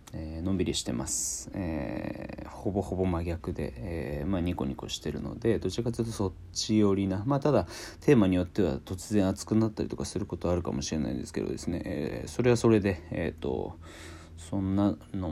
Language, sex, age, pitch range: Japanese, male, 40-59, 80-100 Hz